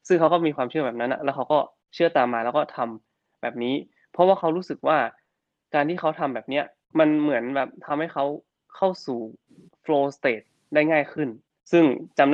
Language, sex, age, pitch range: Thai, male, 20-39, 120-155 Hz